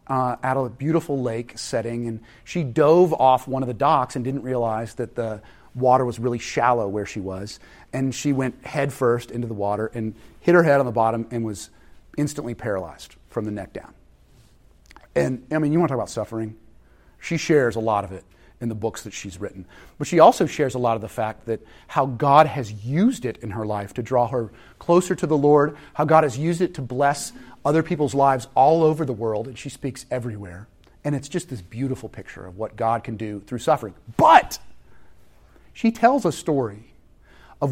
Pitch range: 115-150 Hz